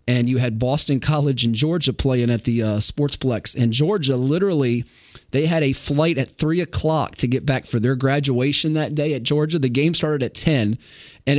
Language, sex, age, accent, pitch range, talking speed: English, male, 30-49, American, 130-165 Hz, 200 wpm